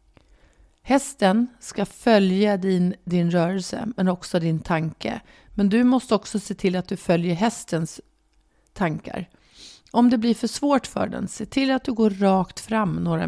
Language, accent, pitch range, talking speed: Swedish, native, 175-225 Hz, 165 wpm